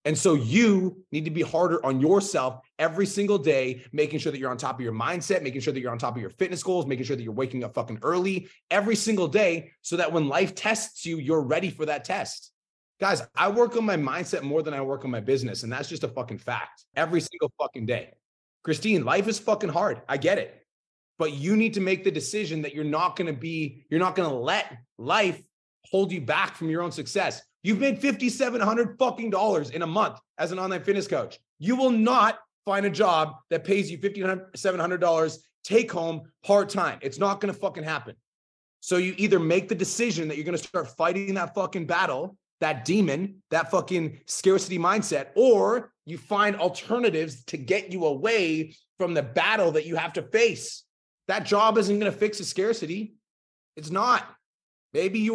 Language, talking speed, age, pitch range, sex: English, 210 wpm, 30-49, 155-205 Hz, male